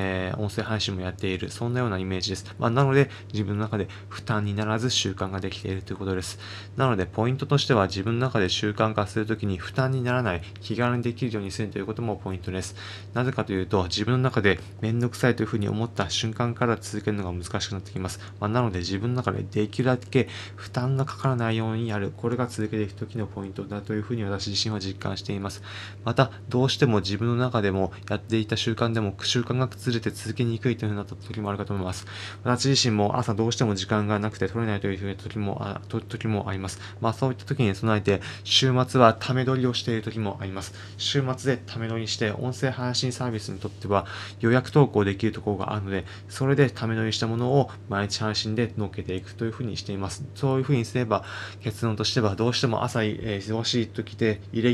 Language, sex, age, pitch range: Japanese, male, 20-39, 100-120 Hz